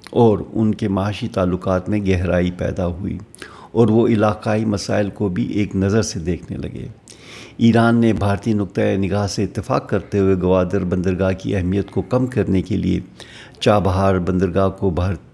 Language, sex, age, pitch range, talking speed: Urdu, male, 50-69, 95-110 Hz, 165 wpm